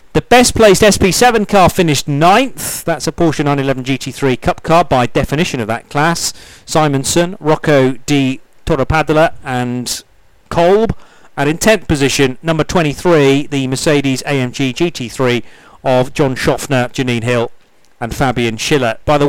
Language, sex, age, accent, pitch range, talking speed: English, male, 40-59, British, 125-165 Hz, 135 wpm